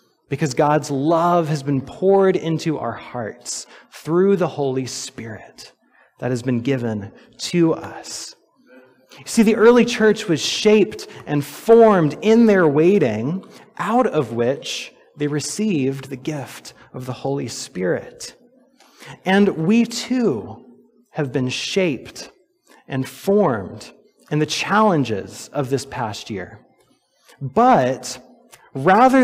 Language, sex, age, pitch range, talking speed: English, male, 30-49, 135-205 Hz, 120 wpm